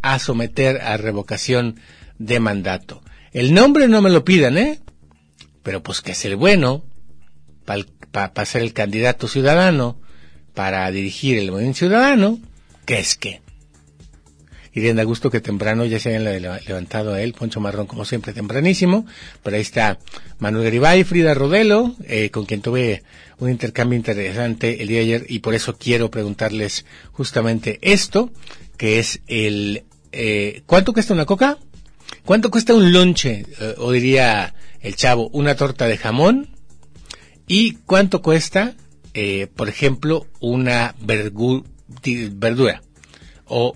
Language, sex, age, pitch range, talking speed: Spanish, male, 40-59, 100-145 Hz, 140 wpm